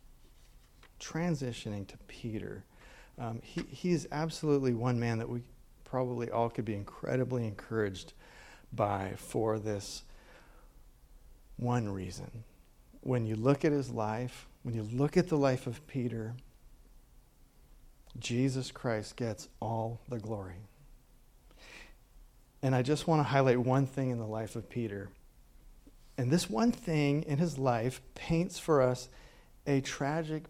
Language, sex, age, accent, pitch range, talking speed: English, male, 40-59, American, 115-140 Hz, 135 wpm